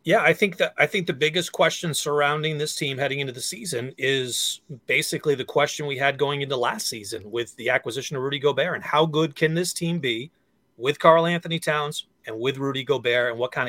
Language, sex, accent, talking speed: English, male, American, 220 wpm